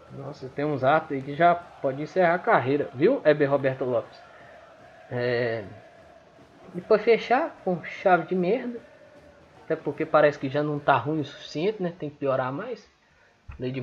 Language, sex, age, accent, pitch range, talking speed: Portuguese, male, 20-39, Brazilian, 140-195 Hz, 165 wpm